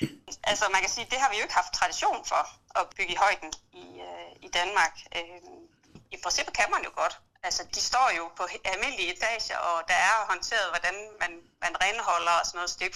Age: 30-49